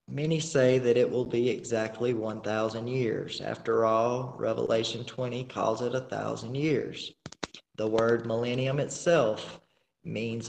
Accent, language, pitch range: American, English, 115-130 Hz